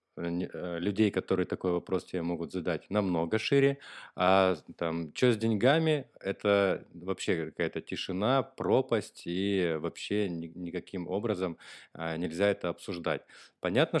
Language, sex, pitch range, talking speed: Russian, male, 85-100 Hz, 115 wpm